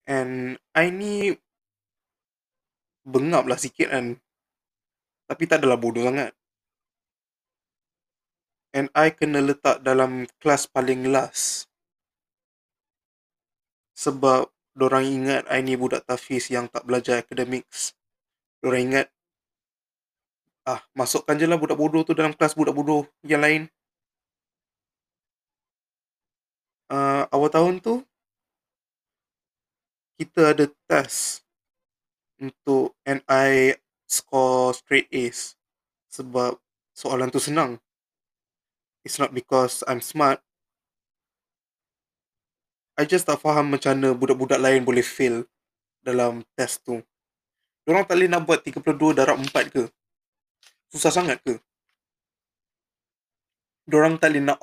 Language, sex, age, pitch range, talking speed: Malay, male, 20-39, 125-150 Hz, 105 wpm